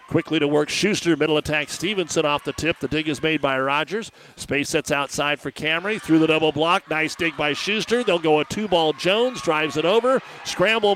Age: 50-69